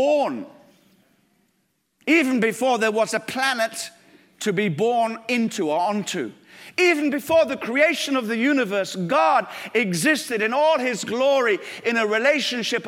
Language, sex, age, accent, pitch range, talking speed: English, male, 50-69, British, 185-265 Hz, 130 wpm